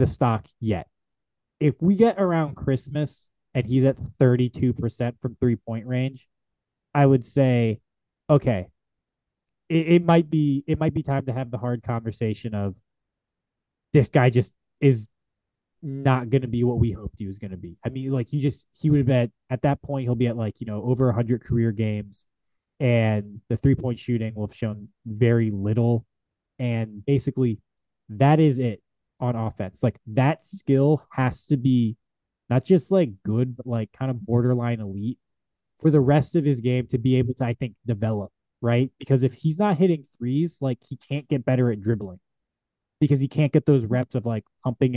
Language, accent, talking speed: English, American, 190 wpm